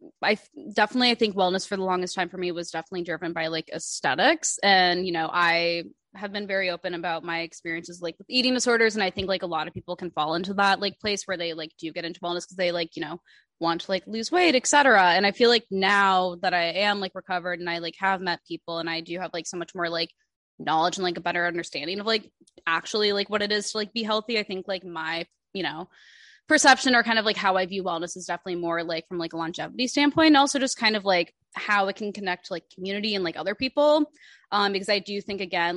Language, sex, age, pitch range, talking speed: English, female, 20-39, 170-205 Hz, 255 wpm